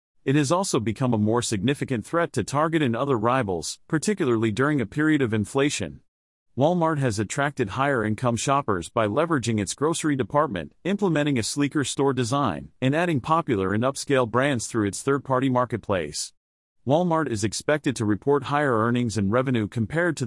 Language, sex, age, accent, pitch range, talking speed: English, male, 40-59, American, 115-150 Hz, 165 wpm